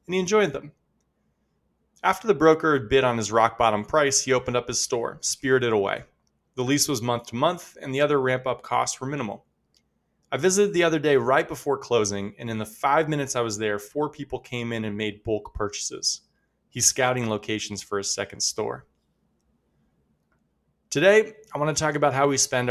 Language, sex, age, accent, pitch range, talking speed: English, male, 20-39, American, 115-150 Hz, 195 wpm